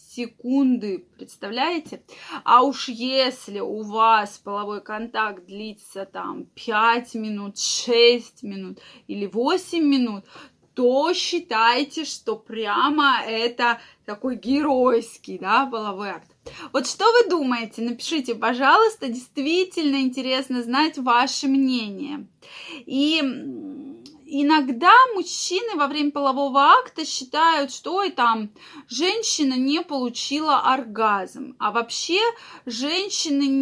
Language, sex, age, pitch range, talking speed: Russian, female, 20-39, 230-300 Hz, 100 wpm